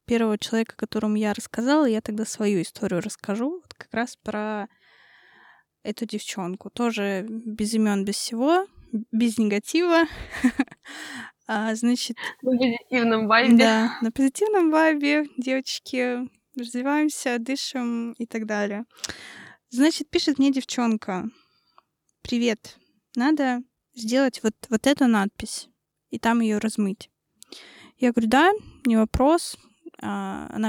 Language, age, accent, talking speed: Russian, 20-39, native, 110 wpm